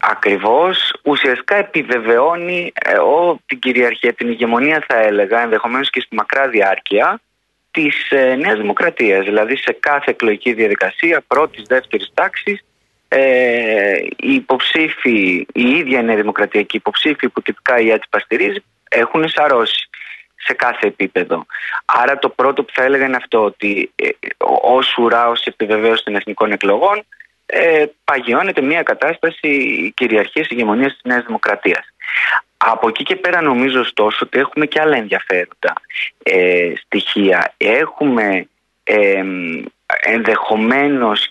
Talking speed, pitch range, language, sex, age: 115 wpm, 110-155 Hz, Greek, male, 30-49